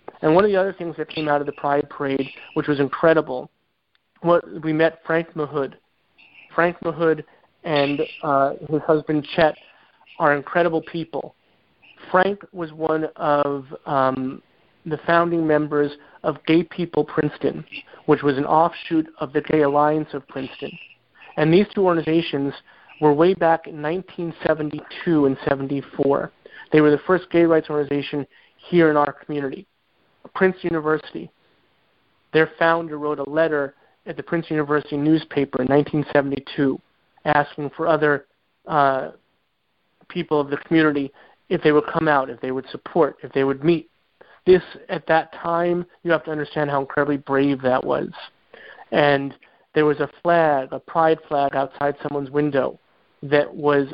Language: English